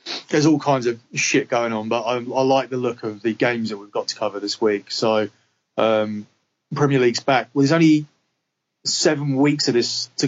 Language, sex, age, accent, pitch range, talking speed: English, male, 20-39, British, 110-135 Hz, 210 wpm